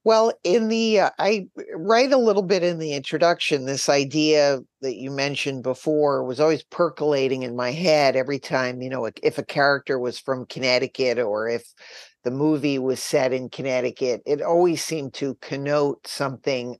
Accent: American